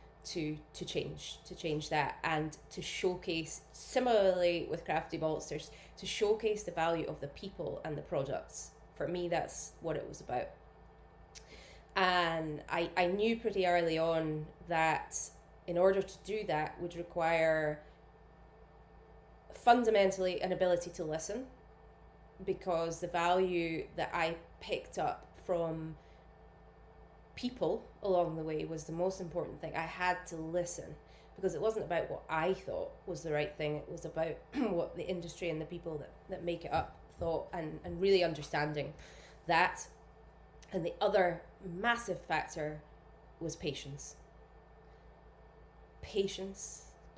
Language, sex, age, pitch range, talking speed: English, female, 20-39, 155-190 Hz, 140 wpm